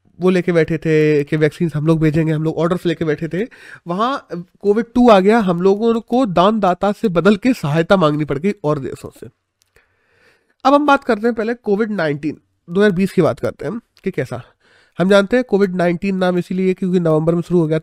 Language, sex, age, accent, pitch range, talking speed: Hindi, male, 30-49, native, 160-210 Hz, 210 wpm